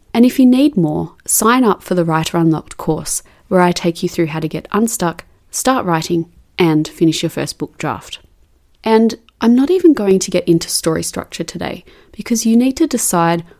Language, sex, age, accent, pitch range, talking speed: English, female, 30-49, Australian, 170-220 Hz, 200 wpm